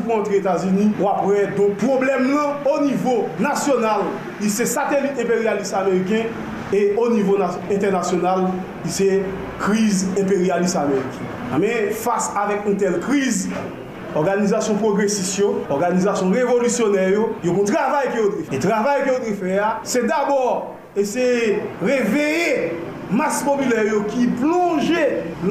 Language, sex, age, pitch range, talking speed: French, male, 40-59, 200-265 Hz, 135 wpm